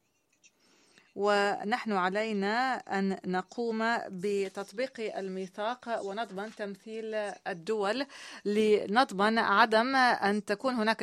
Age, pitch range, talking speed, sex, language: 30-49, 200-235 Hz, 75 wpm, female, Arabic